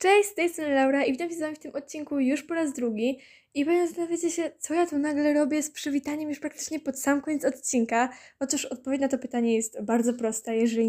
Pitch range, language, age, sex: 250-300 Hz, Polish, 10-29, female